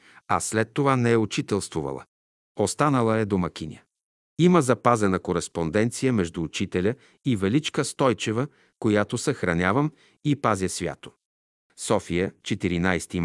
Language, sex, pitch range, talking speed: Bulgarian, male, 90-120 Hz, 110 wpm